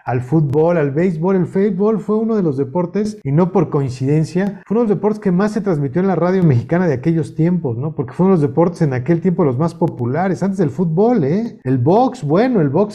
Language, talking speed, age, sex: Spanish, 240 wpm, 50-69, male